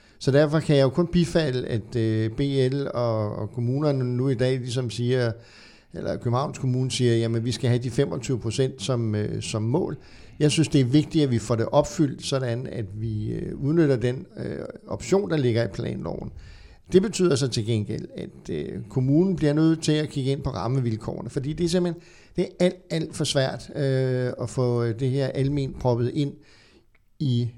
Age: 60-79